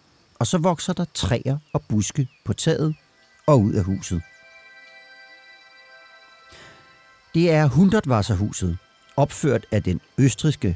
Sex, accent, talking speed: male, native, 110 wpm